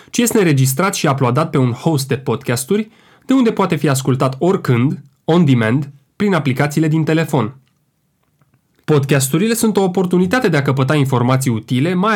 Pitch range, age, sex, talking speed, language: 130-165 Hz, 20-39, male, 155 wpm, Romanian